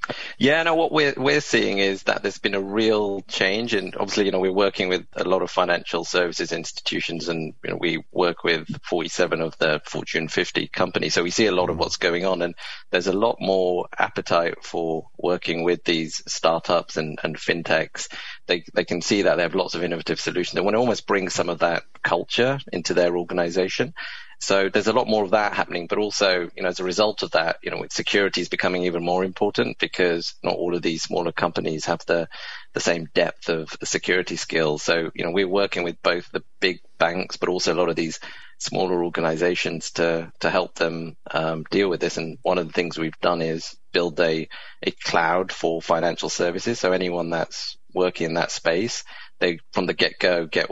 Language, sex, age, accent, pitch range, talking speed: English, male, 30-49, British, 85-95 Hz, 210 wpm